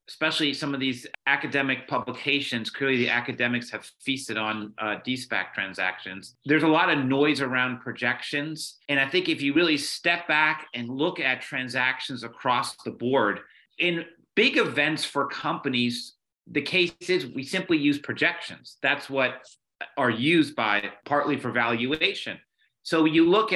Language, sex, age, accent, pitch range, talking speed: English, male, 30-49, American, 125-155 Hz, 155 wpm